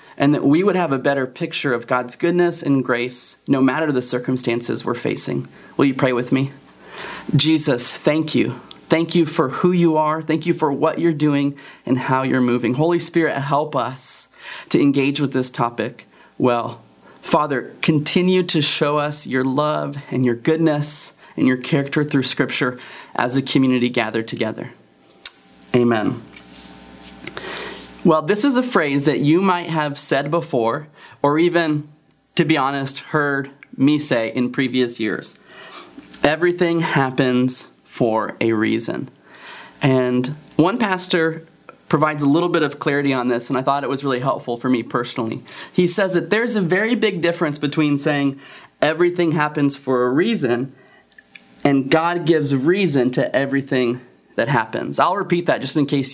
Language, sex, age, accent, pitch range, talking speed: English, male, 30-49, American, 130-160 Hz, 160 wpm